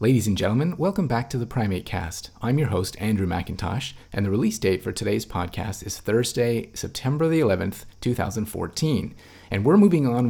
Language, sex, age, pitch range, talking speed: English, male, 30-49, 95-120 Hz, 180 wpm